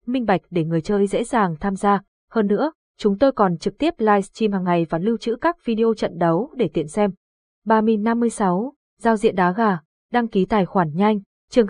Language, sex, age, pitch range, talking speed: Vietnamese, female, 20-39, 185-230 Hz, 205 wpm